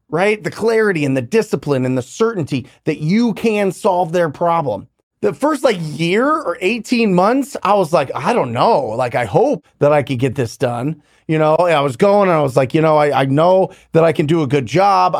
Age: 30-49